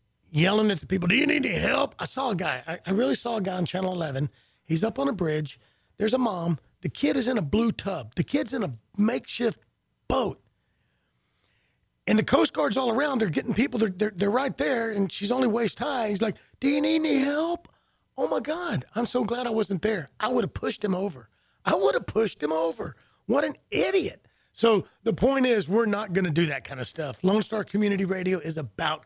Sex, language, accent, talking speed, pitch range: male, English, American, 230 wpm, 160-225 Hz